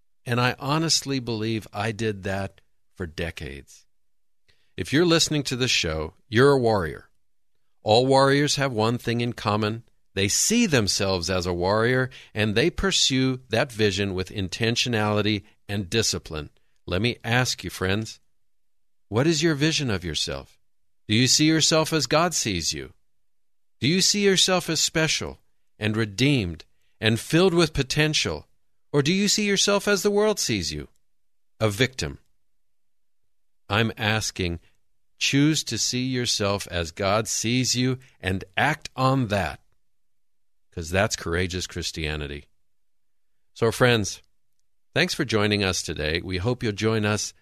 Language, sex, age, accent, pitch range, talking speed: English, male, 50-69, American, 95-130 Hz, 145 wpm